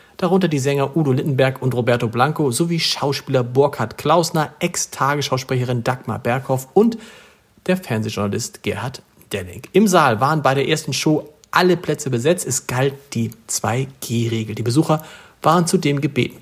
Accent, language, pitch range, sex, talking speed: German, German, 120-160 Hz, male, 145 wpm